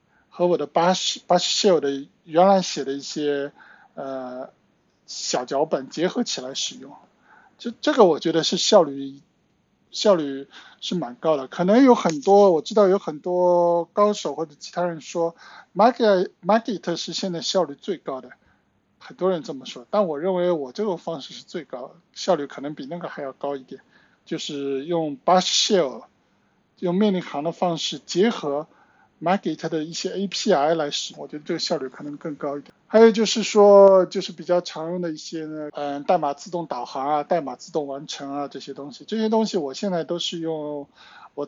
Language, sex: Chinese, male